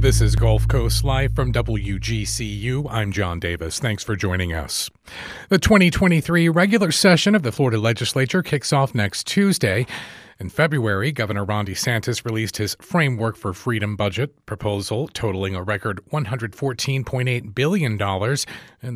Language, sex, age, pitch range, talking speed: English, male, 40-59, 105-150 Hz, 140 wpm